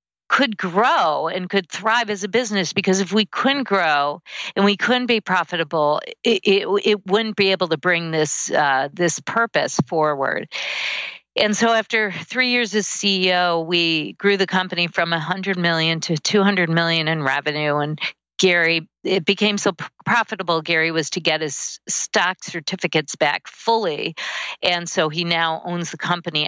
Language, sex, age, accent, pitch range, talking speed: English, female, 50-69, American, 165-210 Hz, 165 wpm